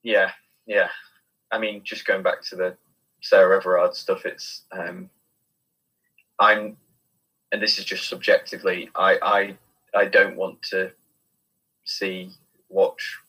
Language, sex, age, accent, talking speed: English, male, 20-39, British, 125 wpm